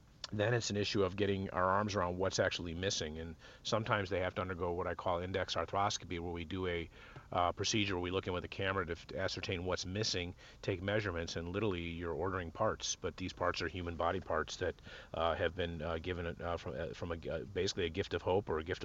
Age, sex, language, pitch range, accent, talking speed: 40-59, male, English, 85-100 Hz, American, 240 wpm